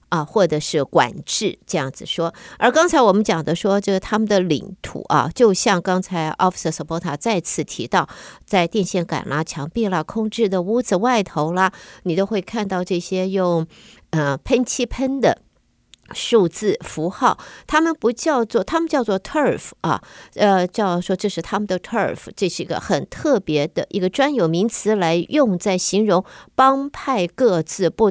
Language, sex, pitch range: Chinese, female, 165-220 Hz